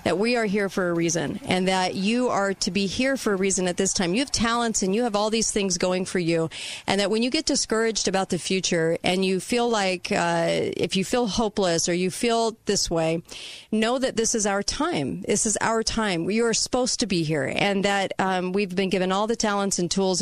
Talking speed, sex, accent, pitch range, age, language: 245 wpm, female, American, 175-215 Hz, 40-59, English